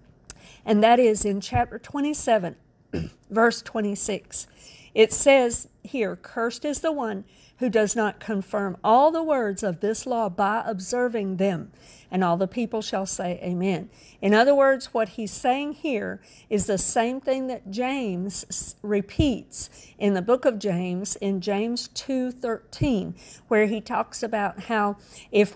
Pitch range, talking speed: 200-250 Hz, 150 wpm